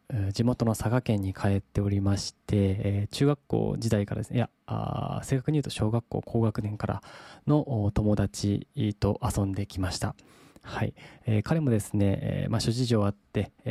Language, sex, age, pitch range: Japanese, male, 20-39, 100-130 Hz